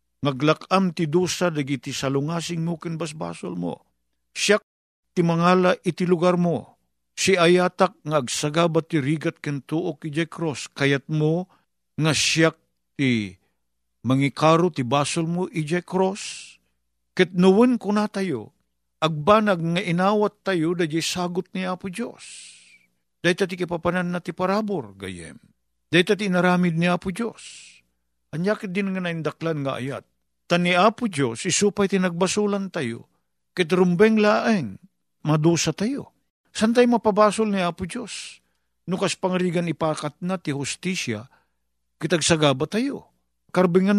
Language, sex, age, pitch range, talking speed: Filipino, male, 50-69, 125-185 Hz, 130 wpm